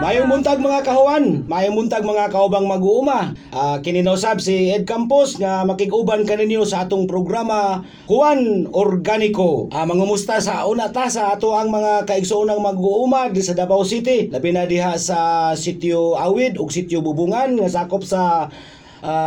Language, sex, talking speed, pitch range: Filipino, male, 150 wpm, 190-255 Hz